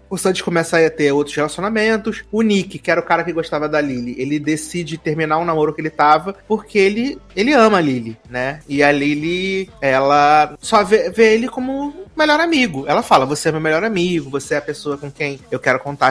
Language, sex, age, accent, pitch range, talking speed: Portuguese, male, 30-49, Brazilian, 140-195 Hz, 220 wpm